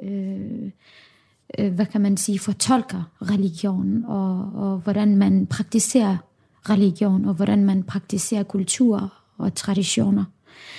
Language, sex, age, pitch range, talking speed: Danish, female, 20-39, 195-225 Hz, 115 wpm